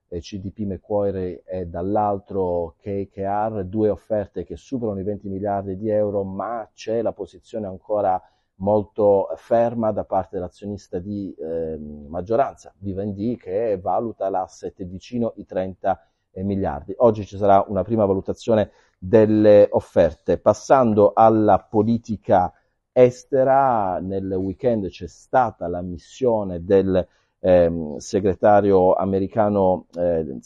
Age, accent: 40-59, native